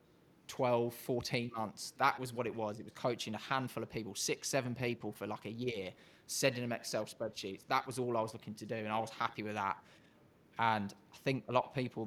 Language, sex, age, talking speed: English, male, 20-39, 235 wpm